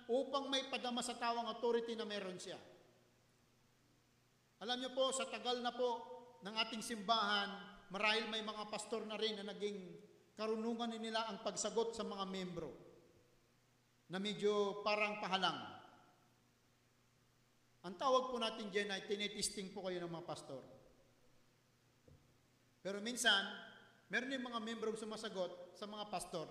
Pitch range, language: 175-235 Hz, Filipino